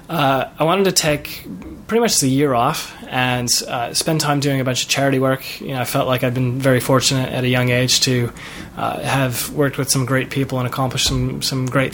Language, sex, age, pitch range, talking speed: English, male, 20-39, 125-150 Hz, 230 wpm